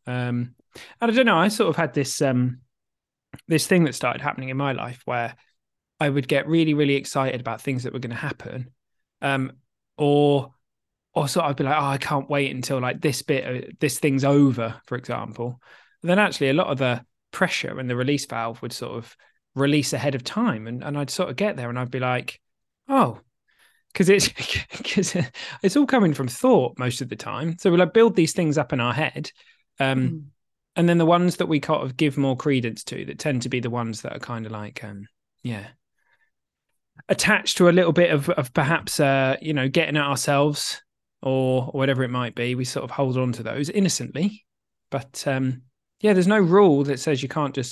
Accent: British